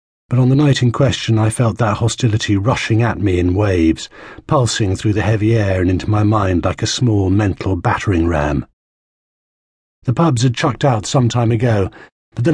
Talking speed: 185 wpm